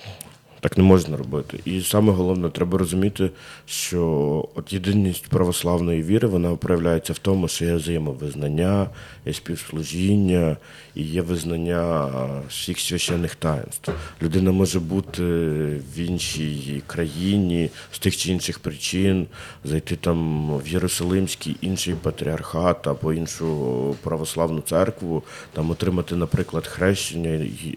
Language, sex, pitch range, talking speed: Ukrainian, male, 80-95 Hz, 115 wpm